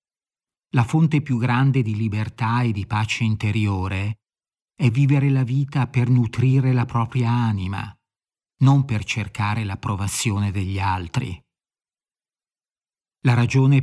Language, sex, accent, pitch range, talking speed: Italian, male, native, 110-135 Hz, 115 wpm